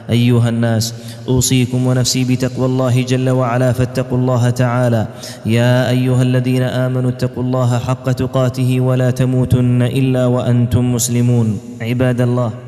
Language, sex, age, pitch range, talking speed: Arabic, male, 20-39, 120-130 Hz, 125 wpm